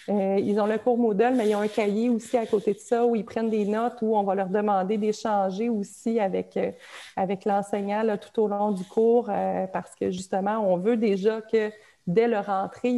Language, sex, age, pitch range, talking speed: French, female, 30-49, 195-230 Hz, 225 wpm